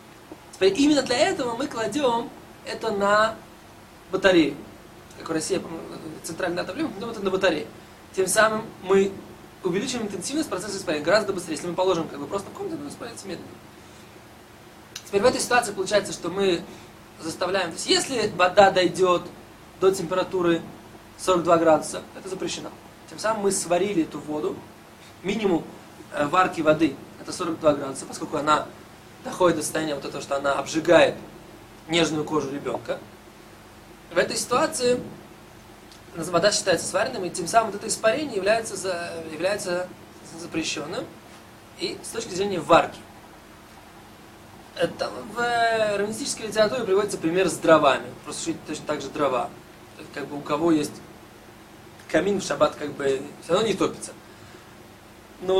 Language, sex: Russian, male